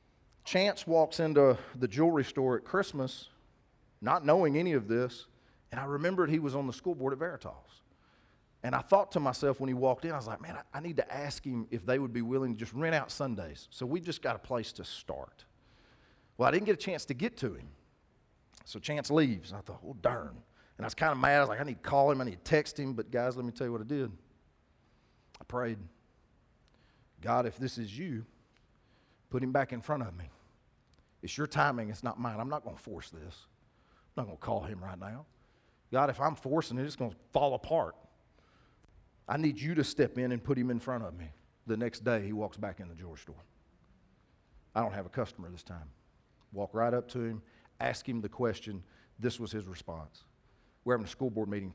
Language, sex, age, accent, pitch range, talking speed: English, male, 40-59, American, 100-135 Hz, 225 wpm